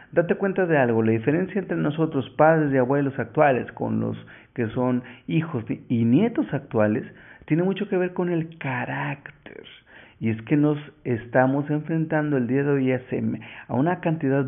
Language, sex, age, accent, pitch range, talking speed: Spanish, male, 50-69, Mexican, 115-150 Hz, 165 wpm